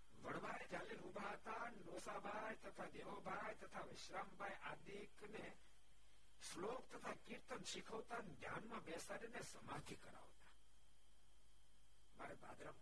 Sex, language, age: male, Gujarati, 60-79